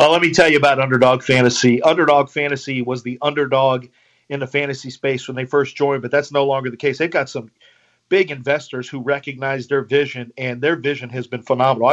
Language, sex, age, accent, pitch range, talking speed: English, male, 40-59, American, 130-150 Hz, 210 wpm